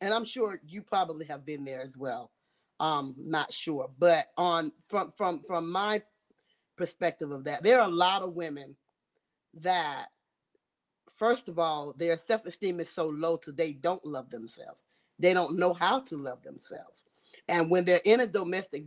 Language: English